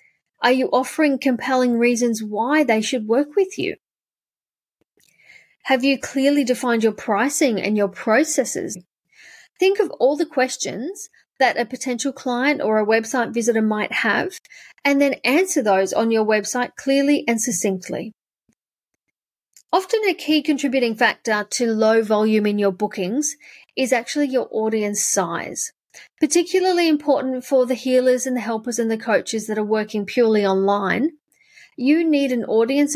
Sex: female